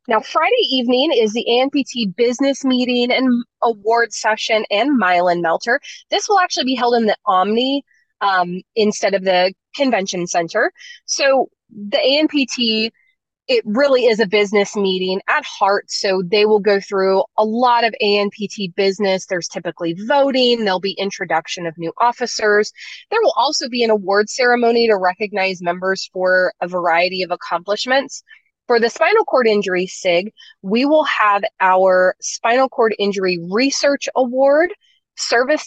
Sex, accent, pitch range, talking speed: female, American, 185-245 Hz, 150 wpm